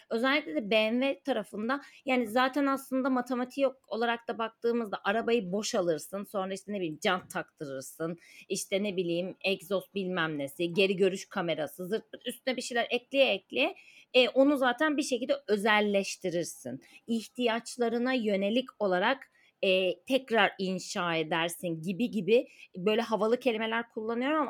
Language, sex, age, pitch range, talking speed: Turkish, female, 30-49, 195-260 Hz, 130 wpm